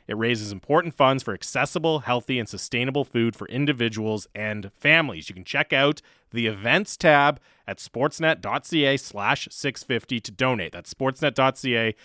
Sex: male